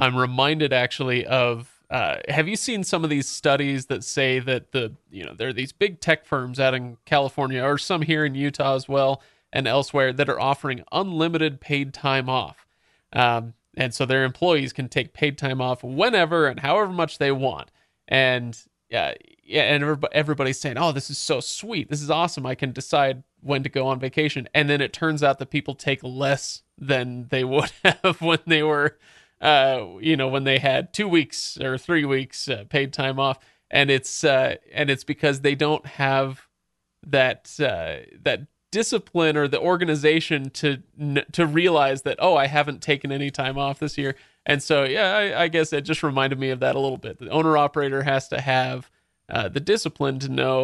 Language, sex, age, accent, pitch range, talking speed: English, male, 30-49, American, 130-150 Hz, 200 wpm